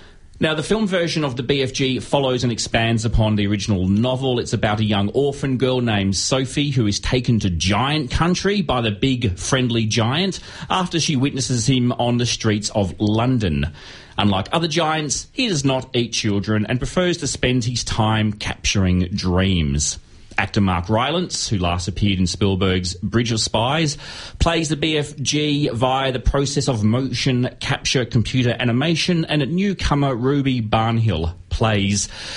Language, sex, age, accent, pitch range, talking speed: English, male, 30-49, Australian, 105-135 Hz, 160 wpm